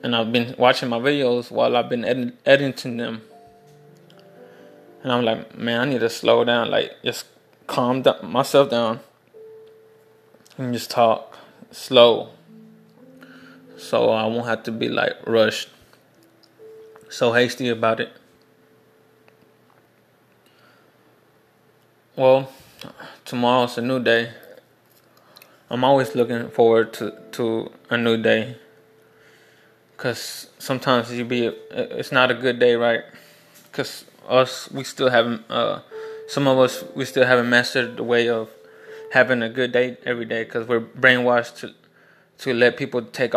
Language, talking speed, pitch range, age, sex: English, 135 wpm, 115-135 Hz, 20-39, male